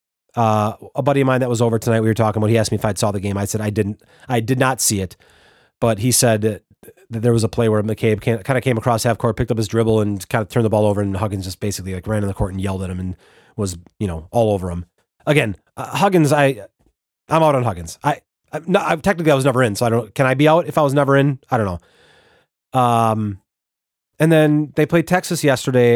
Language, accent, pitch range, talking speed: English, American, 105-150 Hz, 275 wpm